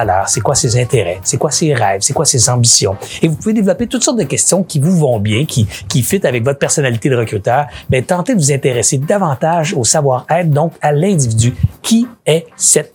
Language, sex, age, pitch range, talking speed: French, male, 60-79, 120-160 Hz, 215 wpm